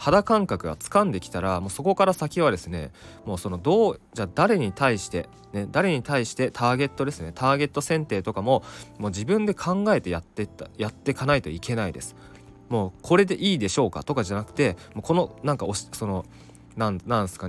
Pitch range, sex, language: 100-145 Hz, male, Japanese